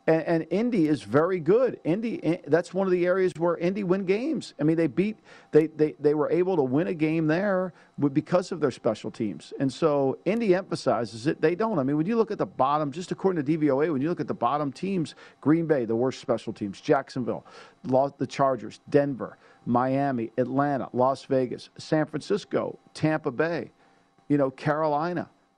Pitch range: 125-155 Hz